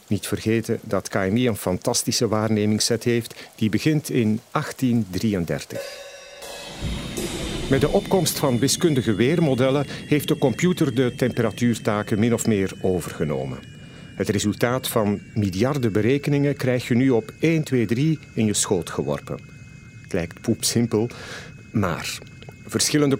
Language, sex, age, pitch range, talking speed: Dutch, male, 50-69, 110-145 Hz, 125 wpm